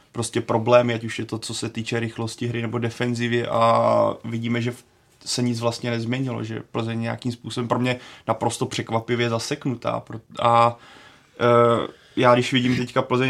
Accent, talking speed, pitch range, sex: native, 160 wpm, 115-125 Hz, male